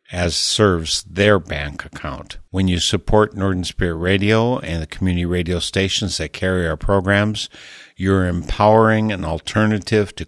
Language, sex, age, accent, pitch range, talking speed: English, male, 50-69, American, 85-100 Hz, 145 wpm